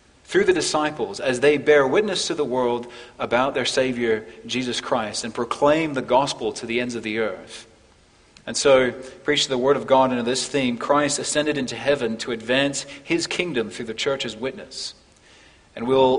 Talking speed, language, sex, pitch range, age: 180 wpm, English, male, 120-155 Hz, 30-49